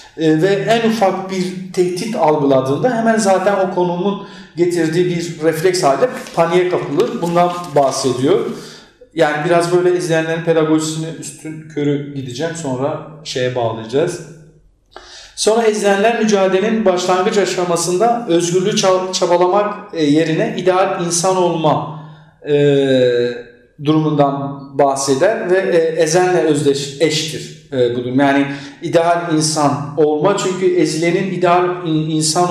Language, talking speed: Turkish, 105 wpm